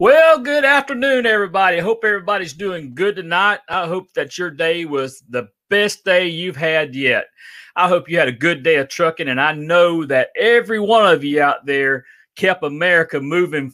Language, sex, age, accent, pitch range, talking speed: English, male, 40-59, American, 150-220 Hz, 190 wpm